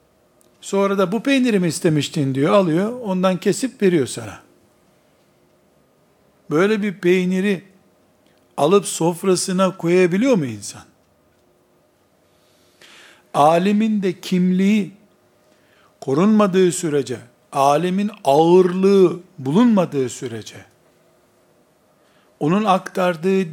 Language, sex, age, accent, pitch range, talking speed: Turkish, male, 60-79, native, 160-195 Hz, 75 wpm